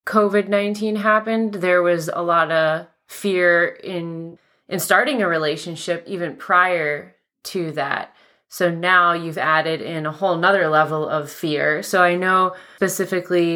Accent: American